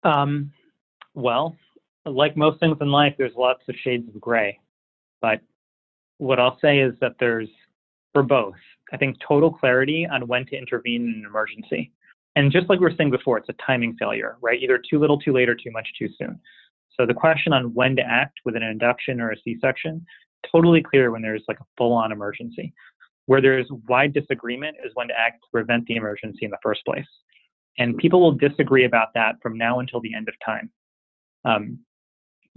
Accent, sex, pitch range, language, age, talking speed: American, male, 115-145 Hz, English, 30-49, 195 wpm